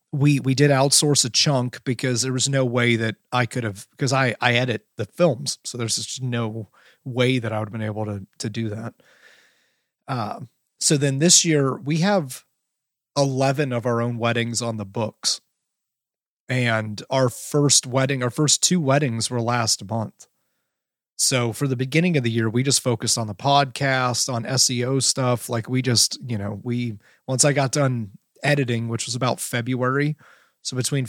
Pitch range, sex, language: 115-140 Hz, male, English